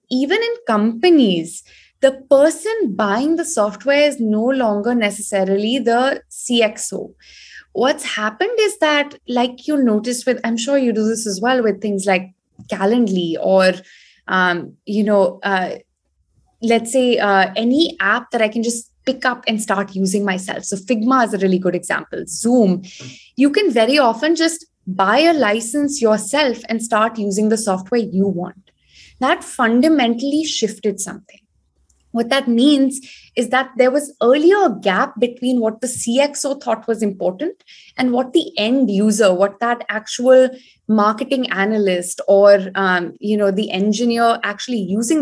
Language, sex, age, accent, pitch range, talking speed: English, female, 20-39, Indian, 205-265 Hz, 150 wpm